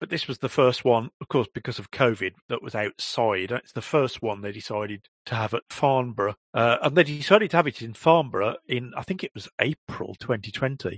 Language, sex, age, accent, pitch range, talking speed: English, male, 40-59, British, 100-140 Hz, 220 wpm